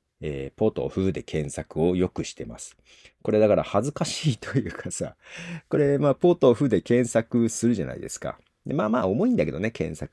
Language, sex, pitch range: Japanese, male, 75-125 Hz